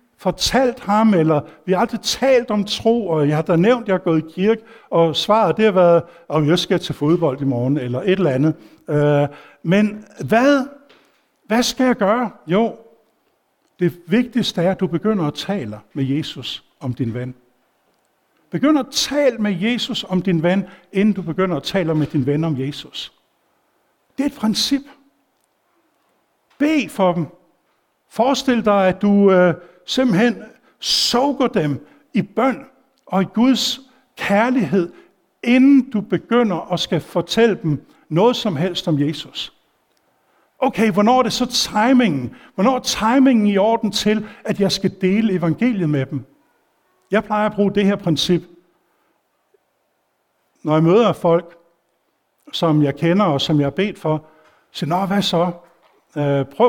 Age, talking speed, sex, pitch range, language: 60-79, 160 wpm, male, 165-230 Hz, Danish